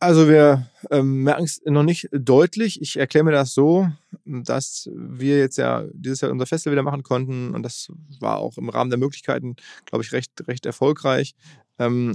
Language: German